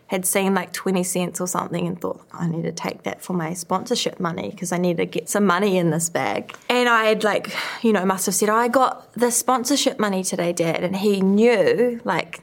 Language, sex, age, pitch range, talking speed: English, female, 20-39, 180-240 Hz, 235 wpm